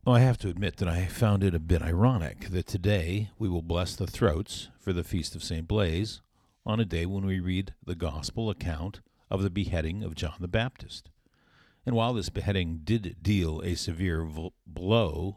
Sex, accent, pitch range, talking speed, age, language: male, American, 85-110 Hz, 190 wpm, 50-69, English